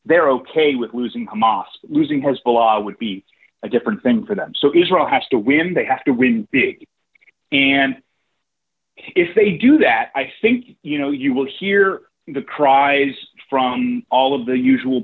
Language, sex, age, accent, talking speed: English, male, 30-49, American, 170 wpm